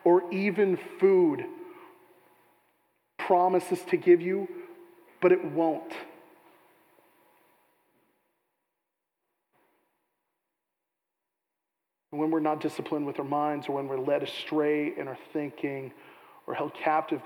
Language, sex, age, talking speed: English, male, 40-59, 95 wpm